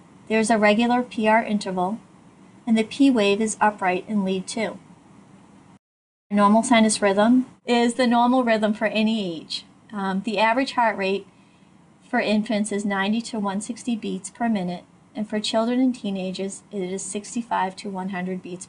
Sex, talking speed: female, 155 wpm